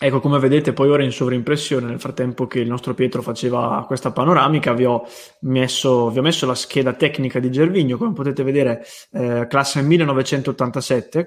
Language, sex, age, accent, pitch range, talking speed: English, male, 20-39, Italian, 125-145 Hz, 165 wpm